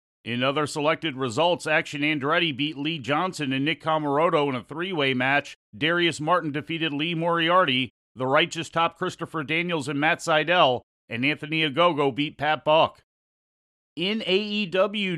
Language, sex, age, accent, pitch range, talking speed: English, male, 40-59, American, 150-180 Hz, 145 wpm